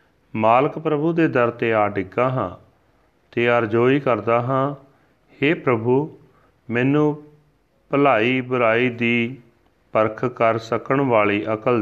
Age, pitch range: 40-59, 115-135 Hz